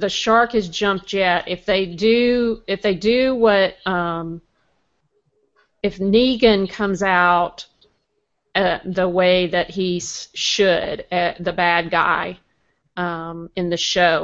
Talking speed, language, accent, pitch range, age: 130 wpm, English, American, 175-205 Hz, 50-69